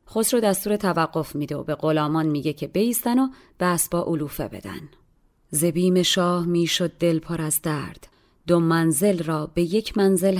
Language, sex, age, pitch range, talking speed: Persian, female, 30-49, 160-215 Hz, 160 wpm